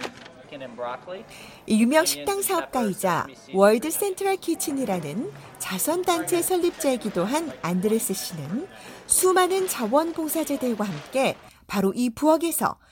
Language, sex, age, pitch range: Korean, female, 40-59, 175-295 Hz